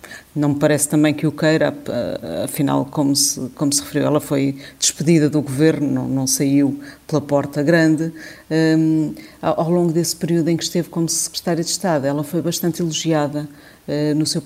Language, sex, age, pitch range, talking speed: Portuguese, female, 50-69, 145-160 Hz, 180 wpm